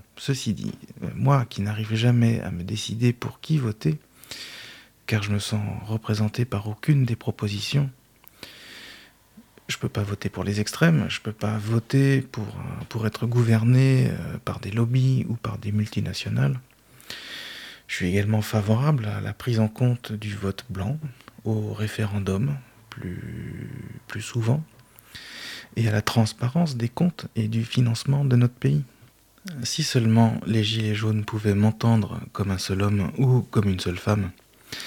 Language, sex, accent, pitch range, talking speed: French, male, French, 105-125 Hz, 155 wpm